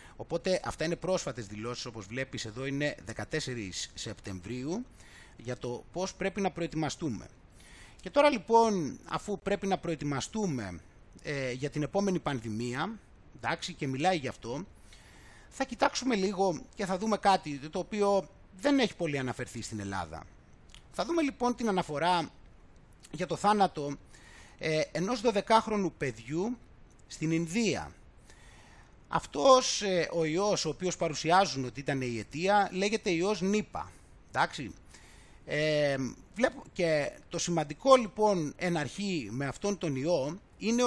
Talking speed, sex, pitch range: 130 wpm, male, 140-200 Hz